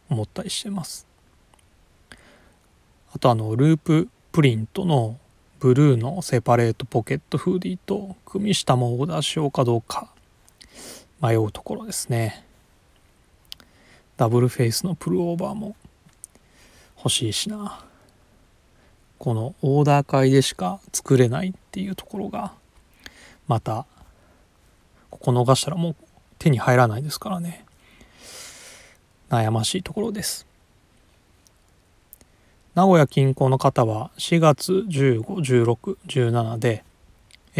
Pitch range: 110-155 Hz